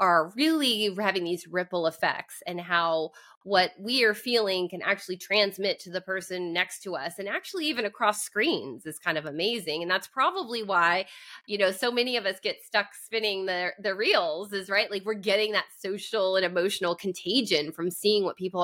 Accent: American